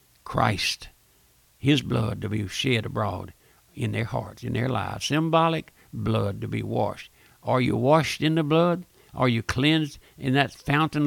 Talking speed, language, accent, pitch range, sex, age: 165 wpm, English, American, 110-140 Hz, male, 60-79